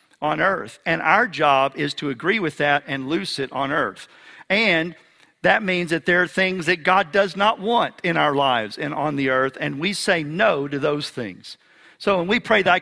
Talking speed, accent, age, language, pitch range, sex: 215 wpm, American, 50-69, English, 155-215 Hz, male